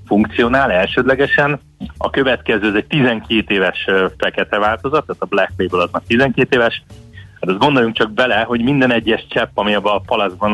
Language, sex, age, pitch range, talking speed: Hungarian, male, 30-49, 95-120 Hz, 175 wpm